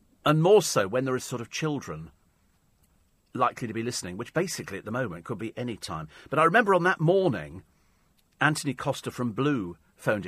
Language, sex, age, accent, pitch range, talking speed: English, male, 40-59, British, 105-145 Hz, 195 wpm